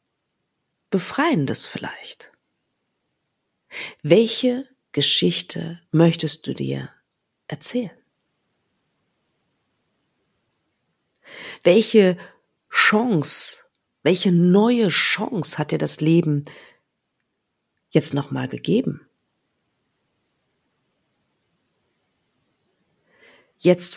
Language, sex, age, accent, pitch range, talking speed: German, female, 50-69, German, 145-180 Hz, 55 wpm